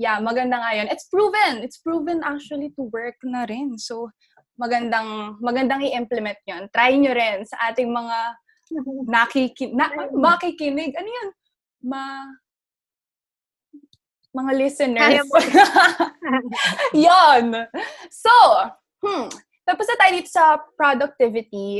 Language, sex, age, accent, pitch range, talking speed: English, female, 20-39, Filipino, 230-320 Hz, 110 wpm